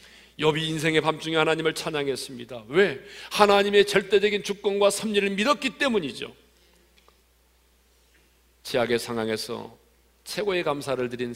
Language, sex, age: Korean, male, 40-59